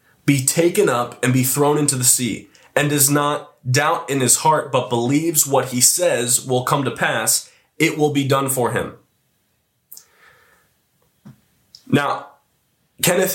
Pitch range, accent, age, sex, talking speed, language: 120-150 Hz, American, 20-39, male, 150 wpm, English